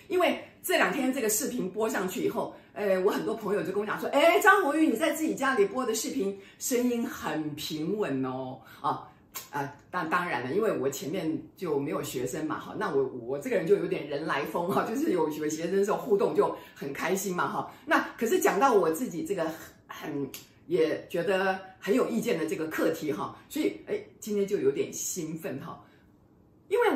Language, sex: Chinese, female